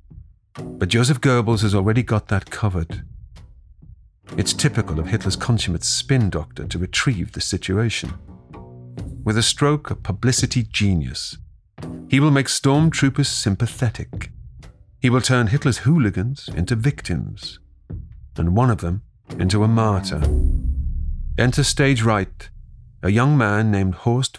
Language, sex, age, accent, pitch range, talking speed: English, male, 40-59, British, 85-125 Hz, 130 wpm